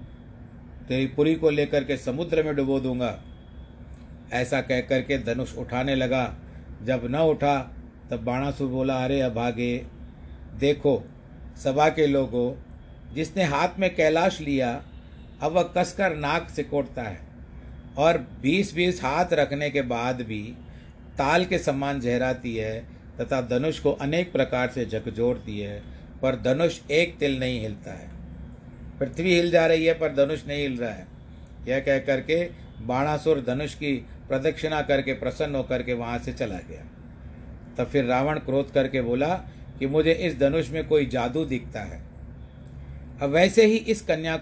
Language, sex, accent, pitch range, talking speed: Hindi, male, native, 120-155 Hz, 150 wpm